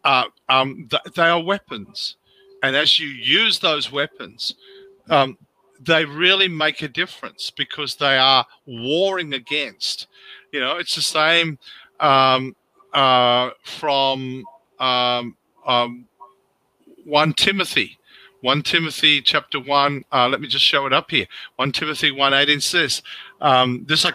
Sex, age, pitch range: male, 50-69, 130-165 Hz